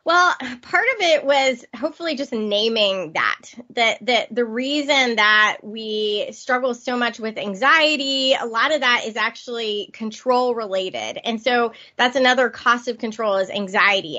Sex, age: female, 20-39